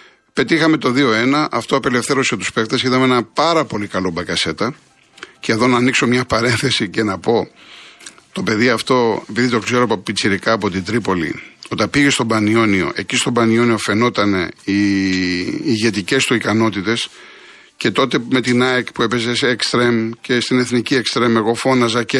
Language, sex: Greek, male